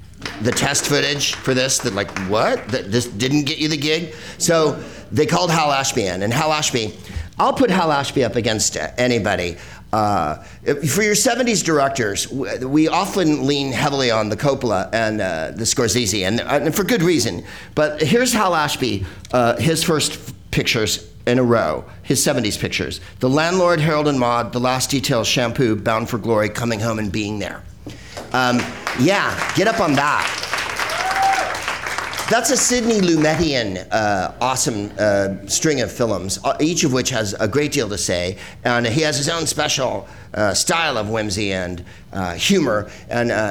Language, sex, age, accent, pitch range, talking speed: English, male, 50-69, American, 105-150 Hz, 170 wpm